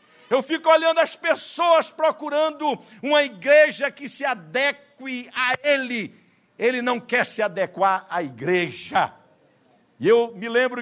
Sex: male